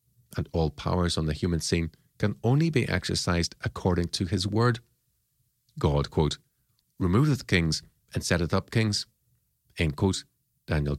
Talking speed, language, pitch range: 140 wpm, English, 85-120 Hz